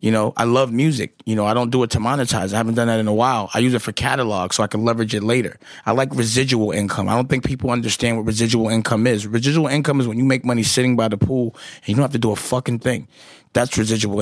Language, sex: English, male